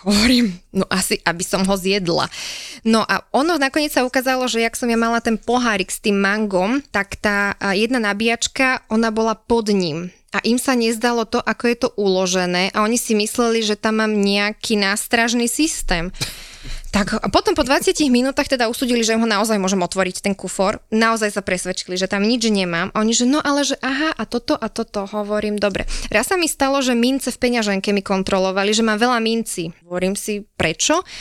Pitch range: 200-250 Hz